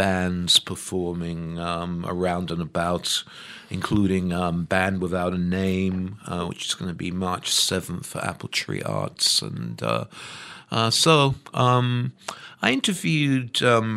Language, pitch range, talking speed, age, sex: English, 95-130 Hz, 140 wpm, 50-69, male